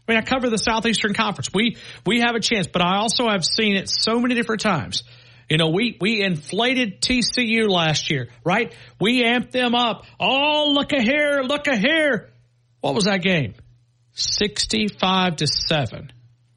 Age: 50-69